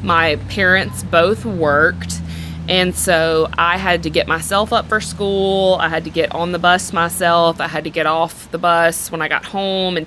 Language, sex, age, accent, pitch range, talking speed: English, female, 20-39, American, 160-180 Hz, 205 wpm